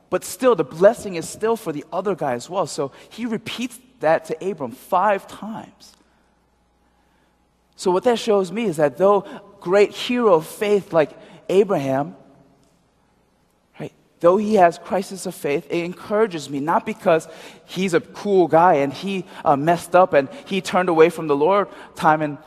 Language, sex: Korean, male